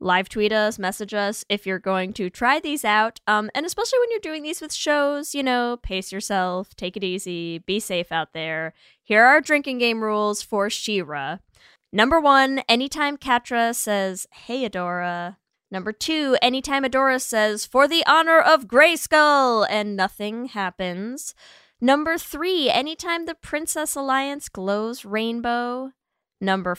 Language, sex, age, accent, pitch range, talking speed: English, female, 10-29, American, 200-275 Hz, 155 wpm